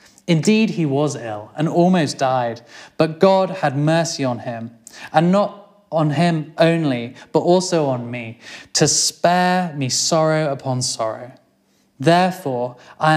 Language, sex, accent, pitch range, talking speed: English, male, British, 125-165 Hz, 135 wpm